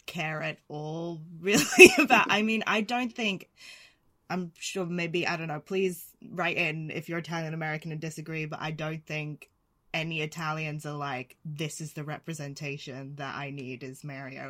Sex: female